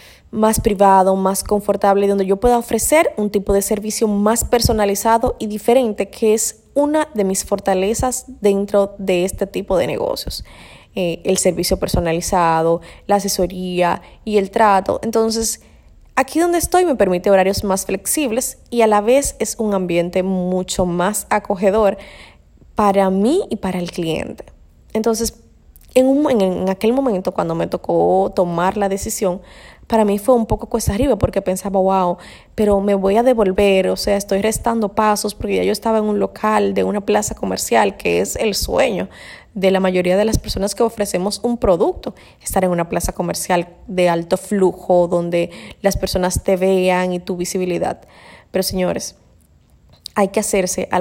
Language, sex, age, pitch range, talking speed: Spanish, female, 20-39, 185-220 Hz, 165 wpm